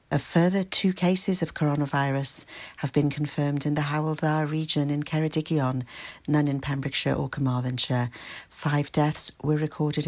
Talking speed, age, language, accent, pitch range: 145 wpm, 60-79, English, British, 135-150 Hz